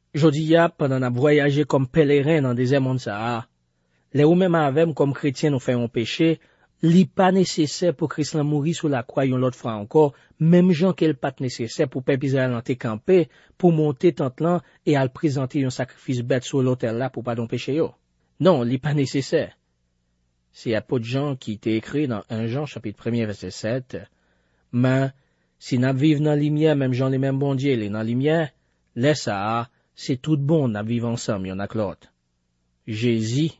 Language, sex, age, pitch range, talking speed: French, male, 40-59, 100-150 Hz, 190 wpm